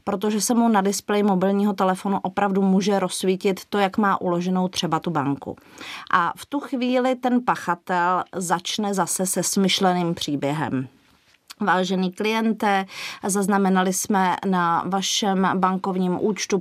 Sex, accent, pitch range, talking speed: female, native, 175-200 Hz, 130 wpm